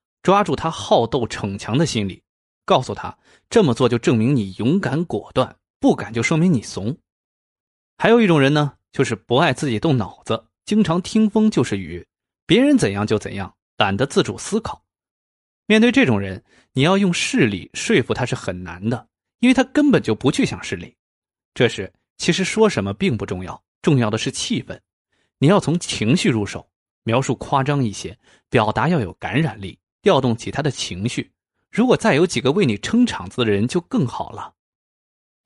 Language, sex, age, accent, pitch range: Chinese, male, 20-39, native, 105-170 Hz